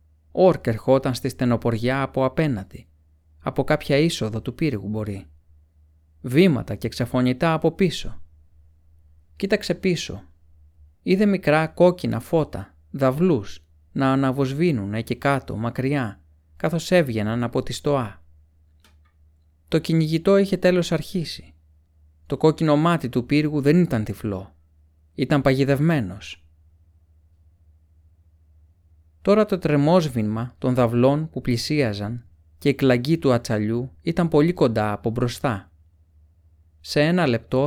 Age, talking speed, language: 30-49, 110 wpm, Greek